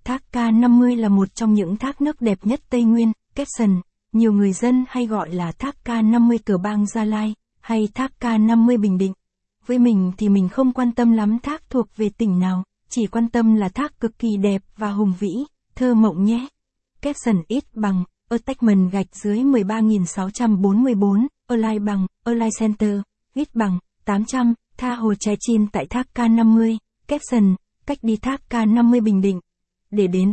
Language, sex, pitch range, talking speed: Vietnamese, female, 200-240 Hz, 180 wpm